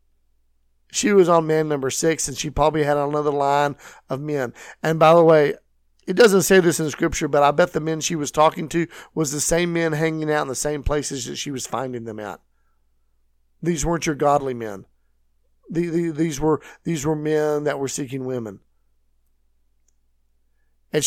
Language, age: English, 50-69